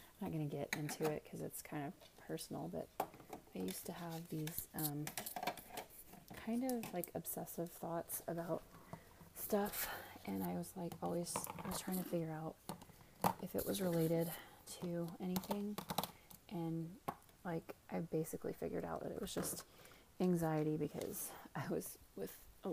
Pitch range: 155-185 Hz